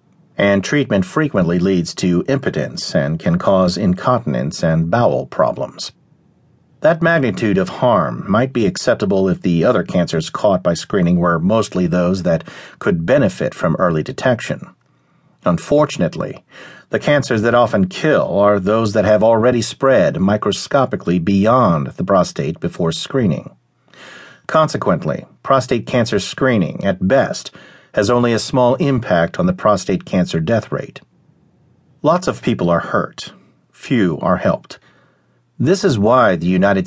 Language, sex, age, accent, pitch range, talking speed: English, male, 50-69, American, 95-140 Hz, 135 wpm